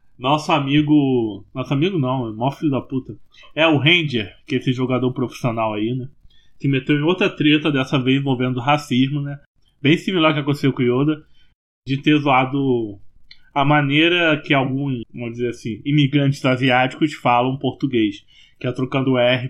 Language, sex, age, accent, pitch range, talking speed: Portuguese, male, 20-39, Brazilian, 125-150 Hz, 170 wpm